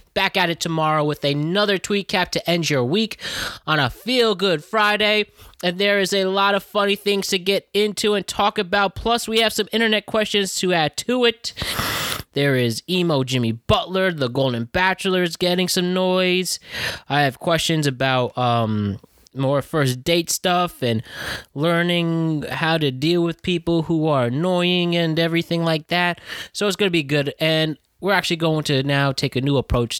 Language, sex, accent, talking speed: English, male, American, 180 wpm